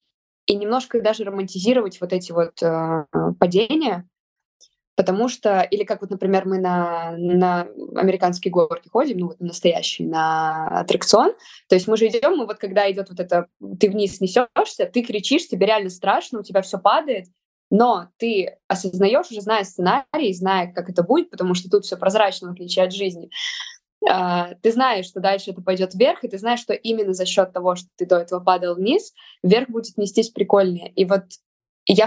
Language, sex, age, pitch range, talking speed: Russian, female, 20-39, 180-225 Hz, 180 wpm